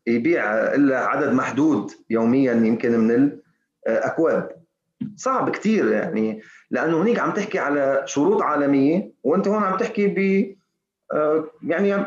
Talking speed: 120 wpm